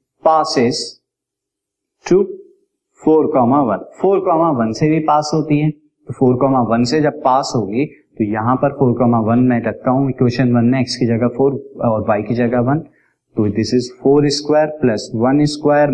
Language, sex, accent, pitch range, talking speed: Hindi, male, native, 120-155 Hz, 175 wpm